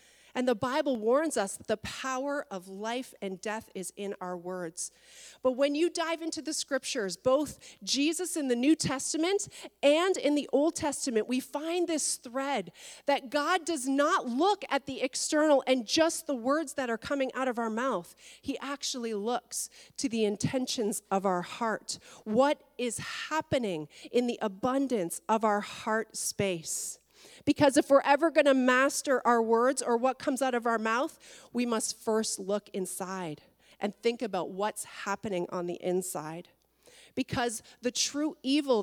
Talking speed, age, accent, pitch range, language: 170 wpm, 40-59, American, 210-280 Hz, English